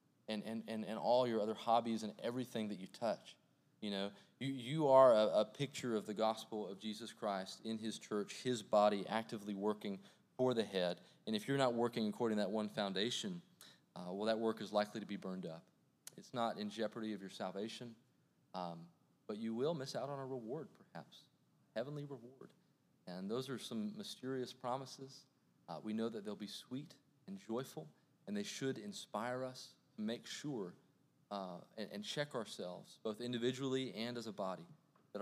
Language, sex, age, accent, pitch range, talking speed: English, male, 30-49, American, 105-140 Hz, 185 wpm